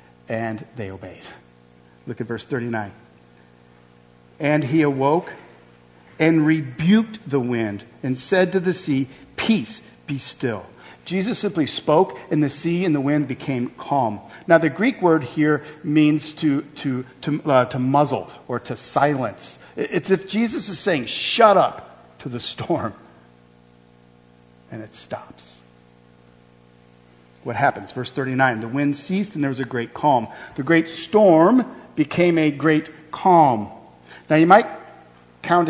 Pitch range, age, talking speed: 110-155 Hz, 50-69, 140 wpm